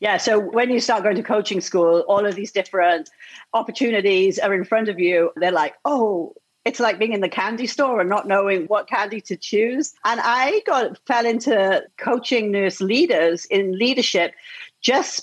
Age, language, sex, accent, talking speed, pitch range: 40-59, English, female, British, 185 wpm, 175-225 Hz